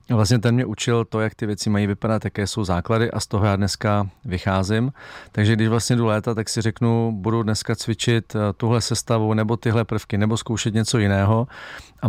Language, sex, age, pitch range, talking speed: Czech, male, 40-59, 100-110 Hz, 200 wpm